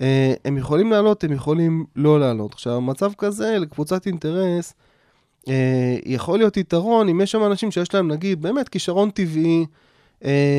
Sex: male